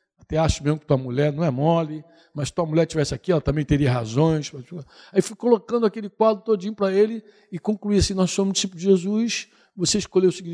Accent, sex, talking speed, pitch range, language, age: Brazilian, male, 215 wpm, 165-235 Hz, Portuguese, 60-79